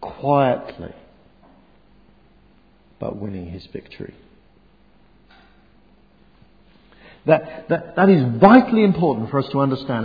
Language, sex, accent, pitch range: English, male, British, 130-180 Hz